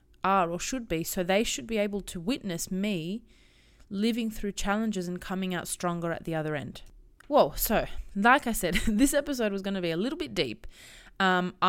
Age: 20-39